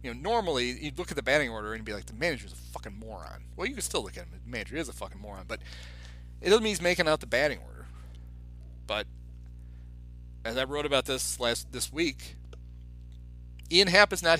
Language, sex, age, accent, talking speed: English, male, 40-59, American, 220 wpm